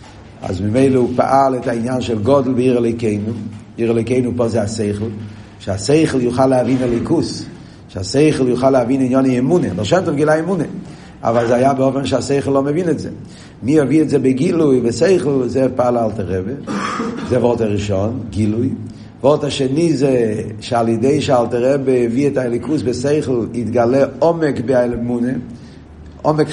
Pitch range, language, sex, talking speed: 115-150 Hz, Hebrew, male, 85 wpm